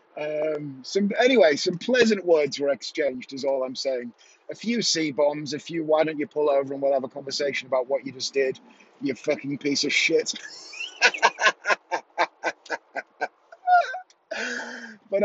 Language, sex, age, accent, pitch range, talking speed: English, male, 30-49, British, 140-190 Hz, 145 wpm